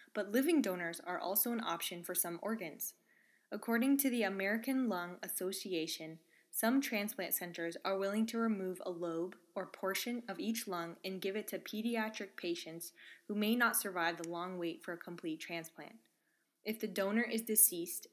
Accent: American